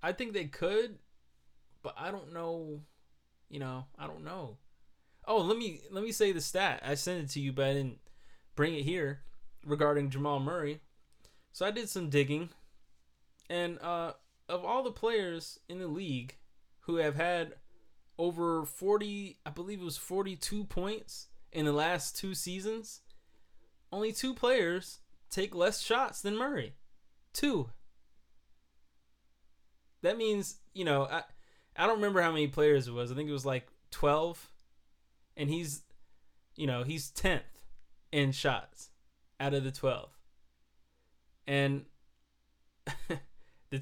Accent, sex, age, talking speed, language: American, male, 20-39, 145 wpm, English